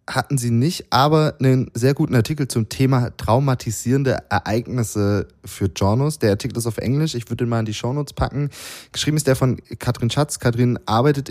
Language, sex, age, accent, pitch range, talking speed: German, male, 20-39, German, 95-125 Hz, 185 wpm